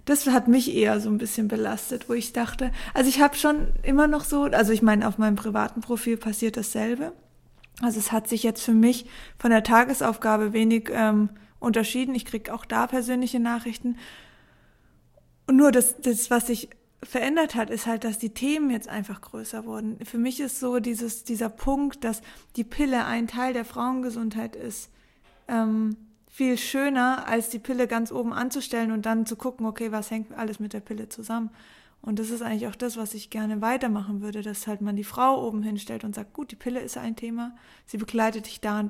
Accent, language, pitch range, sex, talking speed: German, German, 220-250 Hz, female, 200 wpm